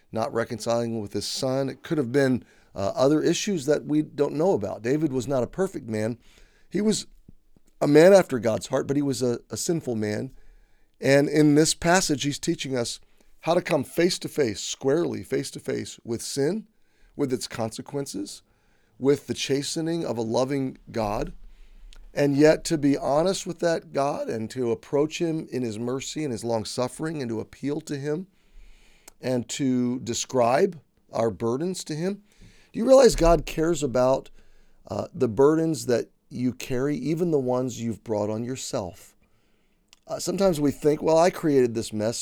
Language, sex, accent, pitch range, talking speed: English, male, American, 120-160 Hz, 170 wpm